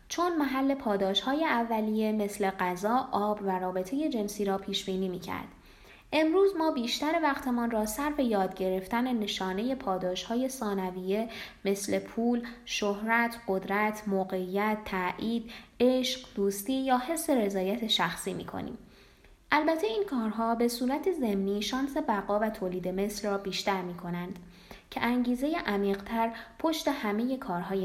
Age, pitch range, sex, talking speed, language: 20-39, 195-260 Hz, female, 125 wpm, Persian